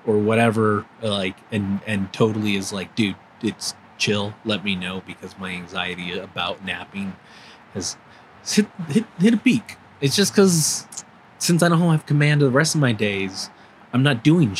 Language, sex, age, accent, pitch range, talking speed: English, male, 30-49, American, 100-135 Hz, 175 wpm